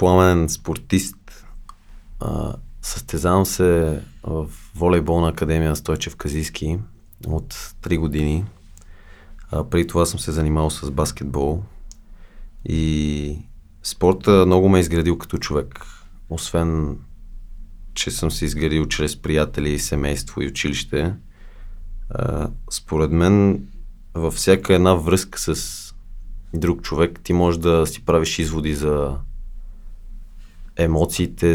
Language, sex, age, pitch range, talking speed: Bulgarian, male, 30-49, 75-90 Hz, 110 wpm